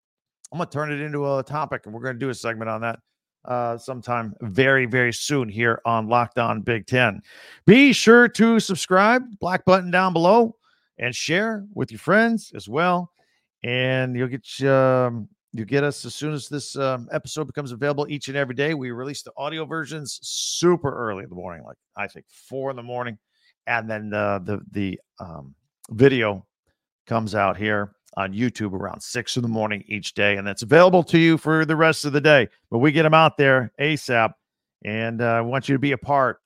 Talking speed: 205 wpm